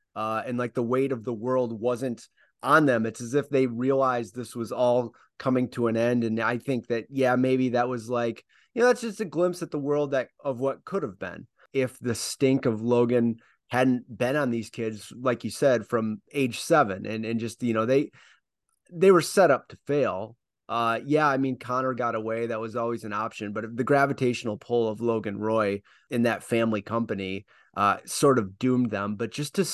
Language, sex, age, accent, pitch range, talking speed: English, male, 30-49, American, 115-135 Hz, 215 wpm